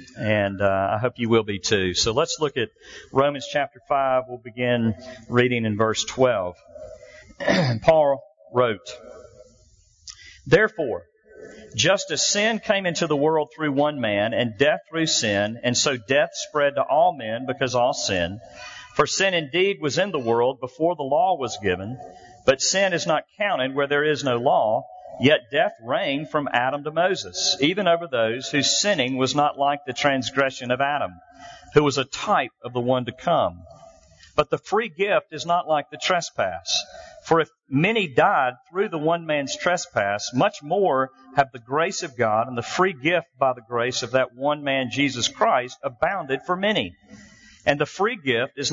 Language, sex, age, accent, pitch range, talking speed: English, male, 50-69, American, 125-160 Hz, 175 wpm